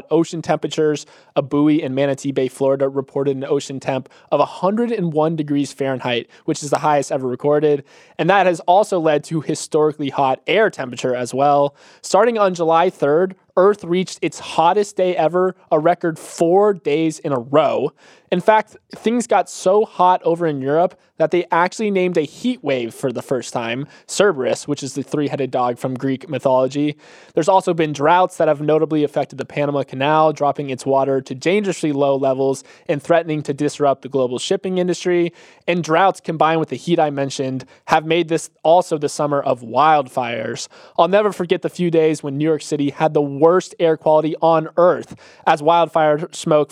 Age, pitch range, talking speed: 20-39, 140-170 Hz, 180 wpm